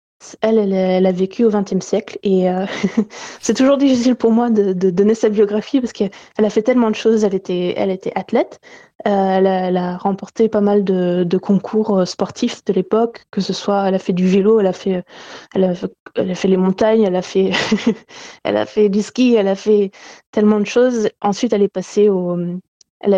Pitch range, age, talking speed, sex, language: 185-220 Hz, 20-39, 190 wpm, female, French